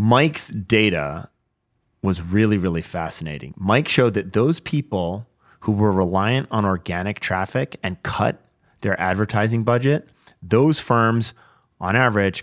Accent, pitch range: American, 95-115 Hz